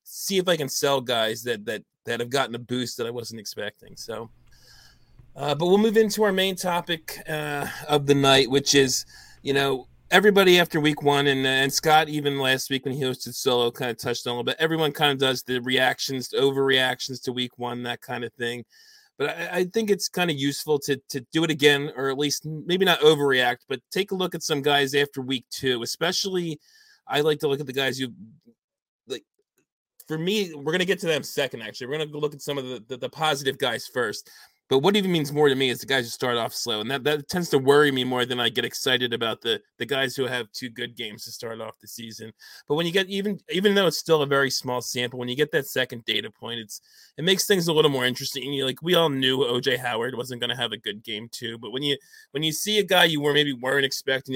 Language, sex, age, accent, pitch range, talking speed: English, male, 30-49, American, 125-160 Hz, 245 wpm